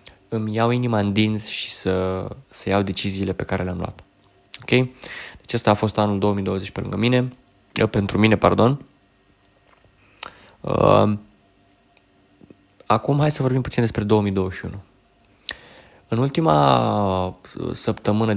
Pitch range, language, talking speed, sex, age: 100-115 Hz, Romanian, 110 wpm, male, 20-39